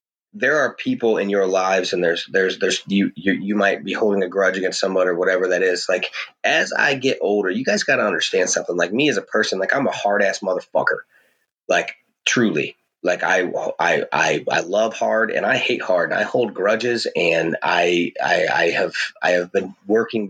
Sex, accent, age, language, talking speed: male, American, 30-49, English, 215 wpm